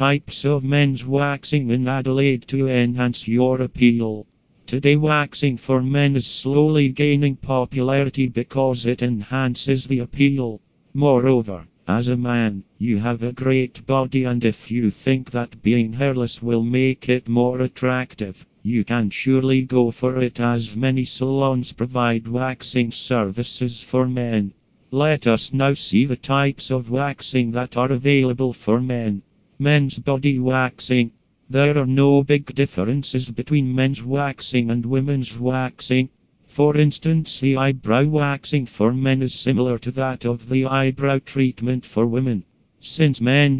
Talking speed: 145 wpm